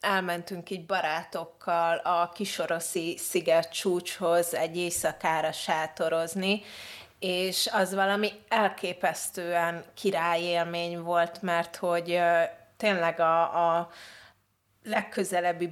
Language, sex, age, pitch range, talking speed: Hungarian, female, 30-49, 165-190 Hz, 85 wpm